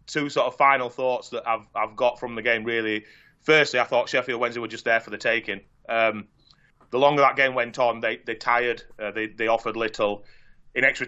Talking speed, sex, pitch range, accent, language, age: 220 wpm, male, 115-130 Hz, British, English, 30-49